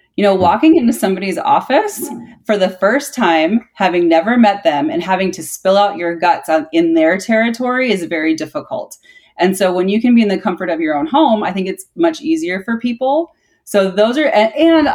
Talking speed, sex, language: 215 wpm, female, English